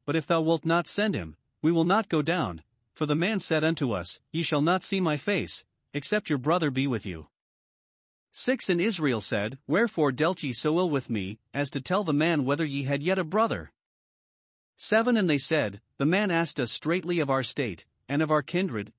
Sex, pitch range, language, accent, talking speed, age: male, 130-175 Hz, English, American, 215 wpm, 40-59